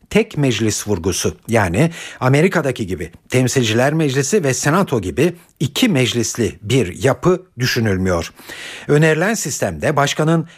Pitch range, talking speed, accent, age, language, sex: 115-170 Hz, 110 wpm, native, 60-79, Turkish, male